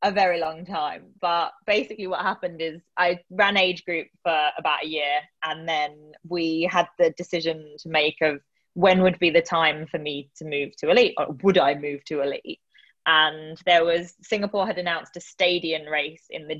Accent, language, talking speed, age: British, English, 195 wpm, 20-39